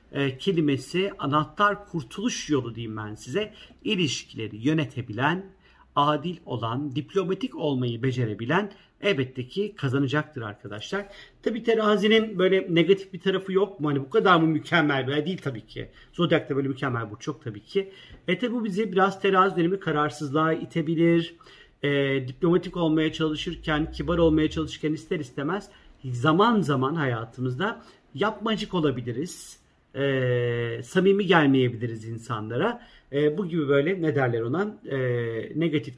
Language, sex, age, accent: Turkish, male, 50-69, native